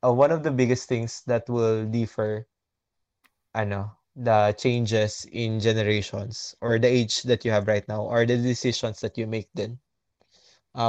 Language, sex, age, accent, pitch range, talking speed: Filipino, male, 20-39, native, 105-125 Hz, 170 wpm